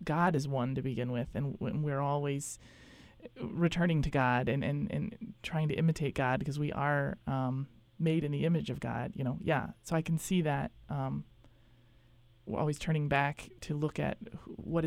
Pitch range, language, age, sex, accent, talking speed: 140-170 Hz, English, 20-39, male, American, 185 wpm